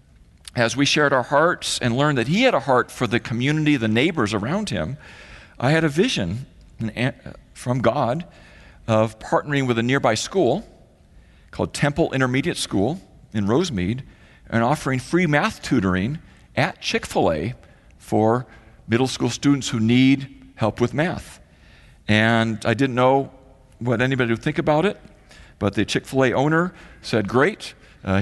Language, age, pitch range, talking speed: English, 50-69, 105-140 Hz, 150 wpm